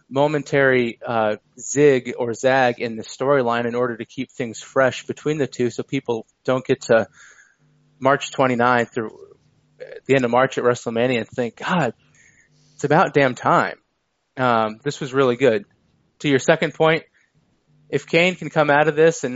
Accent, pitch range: American, 115-135 Hz